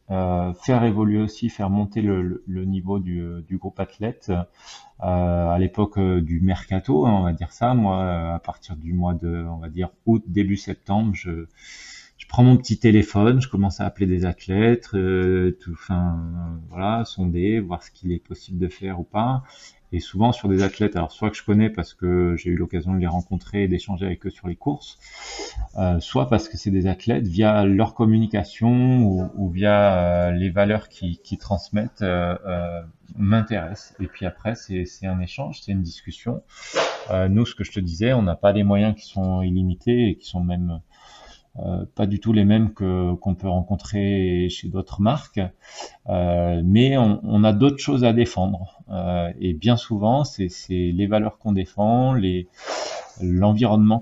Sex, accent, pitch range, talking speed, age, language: male, French, 90-105 Hz, 195 wpm, 30-49, French